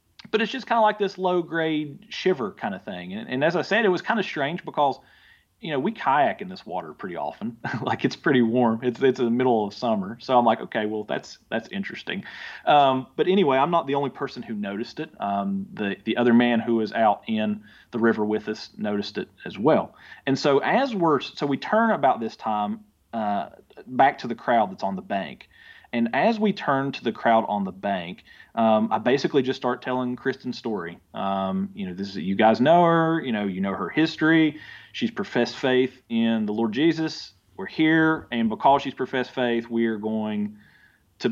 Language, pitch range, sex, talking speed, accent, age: English, 110-160 Hz, male, 215 wpm, American, 30-49